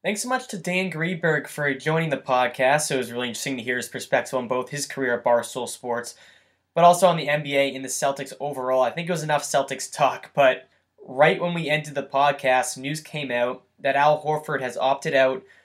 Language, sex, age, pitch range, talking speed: English, male, 10-29, 130-150 Hz, 220 wpm